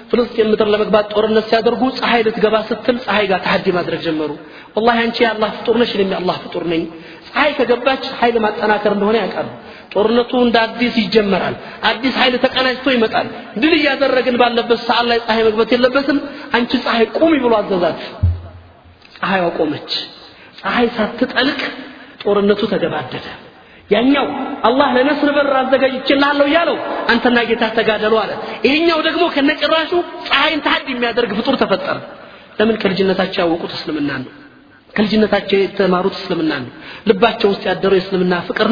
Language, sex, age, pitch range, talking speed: Amharic, male, 40-59, 200-245 Hz, 120 wpm